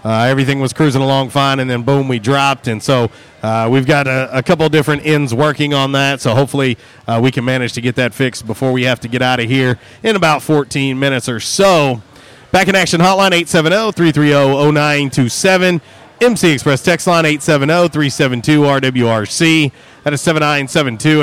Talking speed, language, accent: 185 wpm, English, American